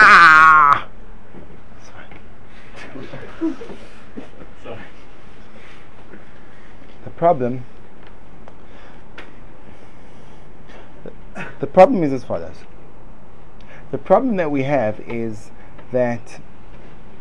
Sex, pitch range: male, 115-150 Hz